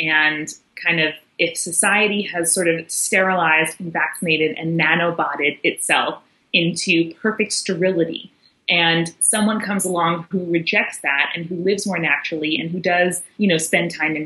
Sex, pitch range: female, 160-190 Hz